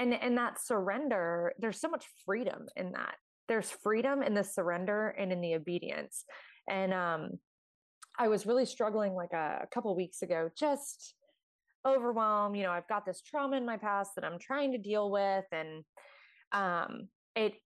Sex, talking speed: female, 175 wpm